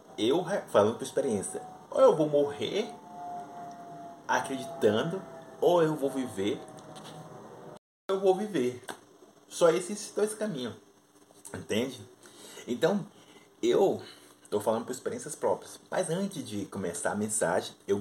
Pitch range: 100-145 Hz